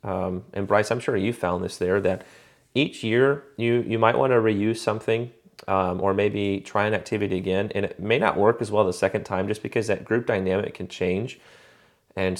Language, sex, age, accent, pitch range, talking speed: English, male, 30-49, American, 95-115 Hz, 215 wpm